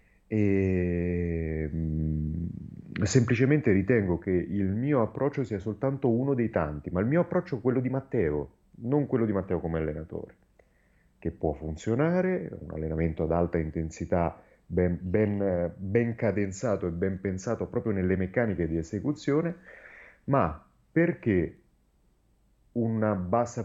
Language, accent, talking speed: Italian, native, 125 wpm